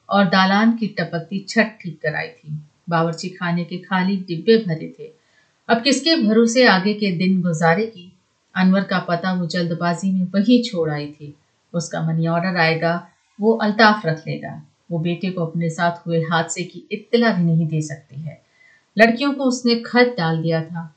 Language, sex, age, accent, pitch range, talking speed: Hindi, female, 30-49, native, 165-215 Hz, 175 wpm